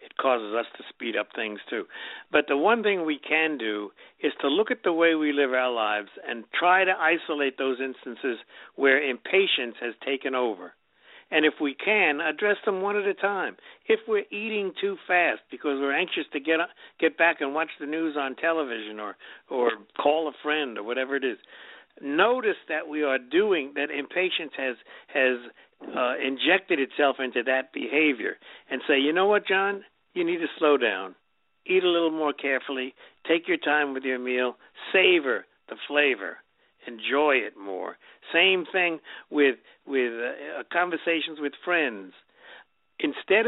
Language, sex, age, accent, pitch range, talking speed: English, male, 60-79, American, 130-195 Hz, 175 wpm